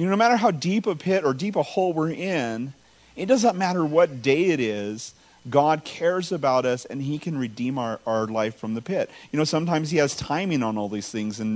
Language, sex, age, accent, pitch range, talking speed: English, male, 40-59, American, 115-155 Hz, 240 wpm